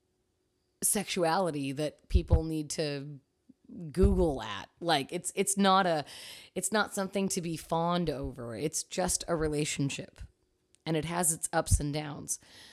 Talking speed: 140 wpm